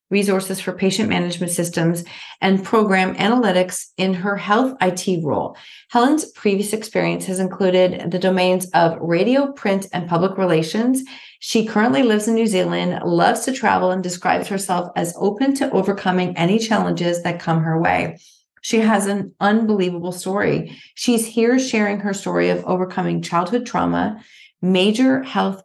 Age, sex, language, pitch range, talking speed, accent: 40-59, female, English, 180-220 Hz, 150 wpm, American